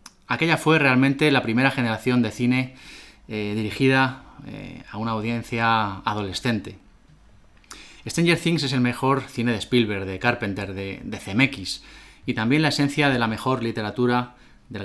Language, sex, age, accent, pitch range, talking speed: Spanish, male, 20-39, Spanish, 105-130 Hz, 150 wpm